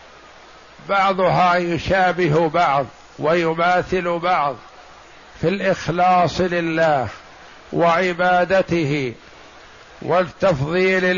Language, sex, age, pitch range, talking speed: Arabic, male, 50-69, 165-180 Hz, 55 wpm